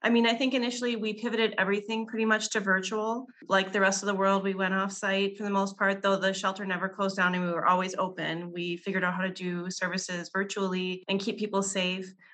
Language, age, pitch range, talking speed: English, 30-49, 185-220 Hz, 235 wpm